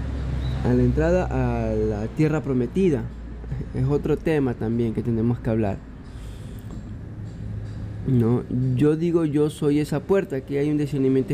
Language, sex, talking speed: Spanish, male, 140 wpm